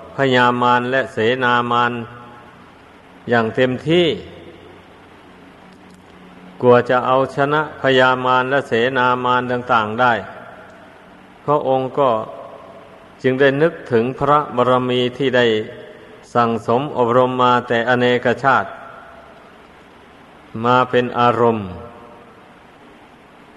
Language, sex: Thai, male